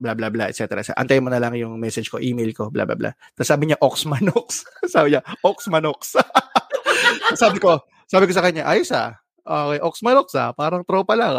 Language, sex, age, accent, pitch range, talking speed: Filipino, male, 20-39, native, 135-180 Hz, 200 wpm